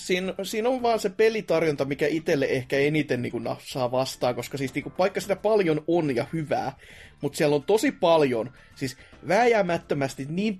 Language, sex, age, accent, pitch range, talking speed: Finnish, male, 30-49, native, 135-180 Hz, 175 wpm